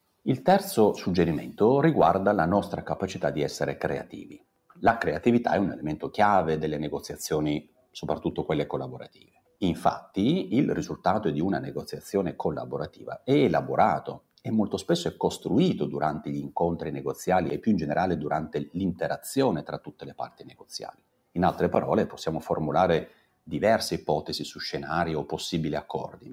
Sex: male